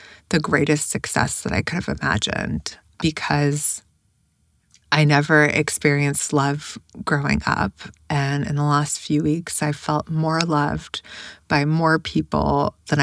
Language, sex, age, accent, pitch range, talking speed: English, female, 30-49, American, 145-155 Hz, 135 wpm